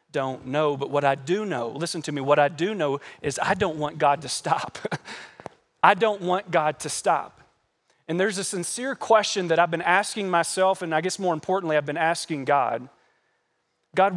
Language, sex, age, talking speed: English, male, 40-59, 200 wpm